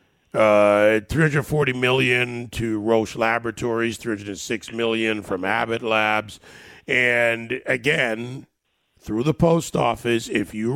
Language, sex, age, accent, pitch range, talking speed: English, male, 50-69, American, 105-130 Hz, 105 wpm